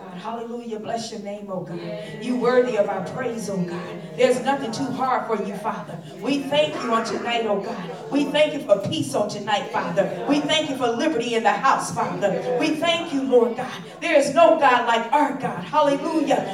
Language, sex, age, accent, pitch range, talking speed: English, female, 40-59, American, 255-385 Hz, 205 wpm